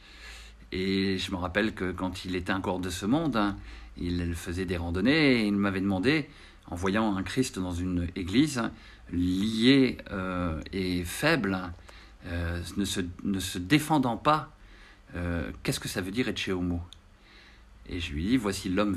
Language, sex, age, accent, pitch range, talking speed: French, male, 50-69, French, 95-120 Hz, 165 wpm